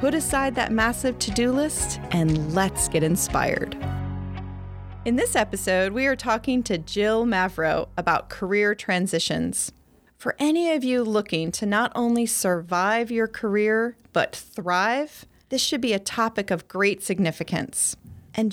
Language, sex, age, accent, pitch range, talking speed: English, female, 30-49, American, 185-250 Hz, 145 wpm